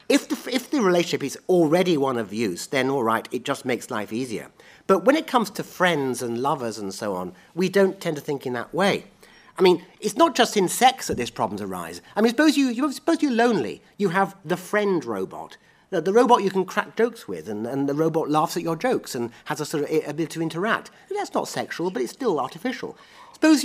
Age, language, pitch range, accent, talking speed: 40-59, English, 130-210 Hz, British, 240 wpm